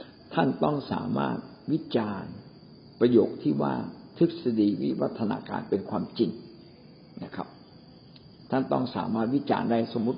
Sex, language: male, Thai